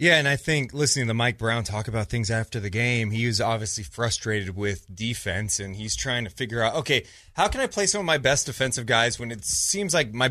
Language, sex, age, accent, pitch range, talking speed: English, male, 30-49, American, 120-170 Hz, 245 wpm